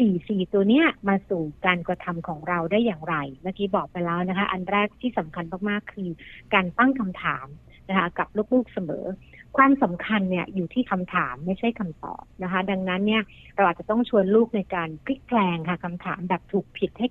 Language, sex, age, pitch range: Thai, female, 60-79, 180-230 Hz